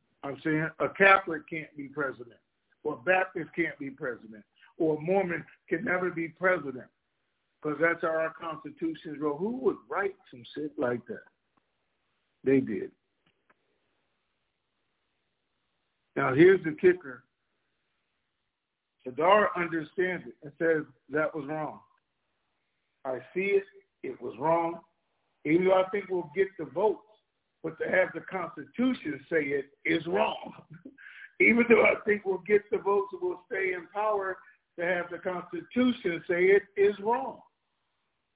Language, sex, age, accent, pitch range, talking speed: English, male, 60-79, American, 145-195 Hz, 140 wpm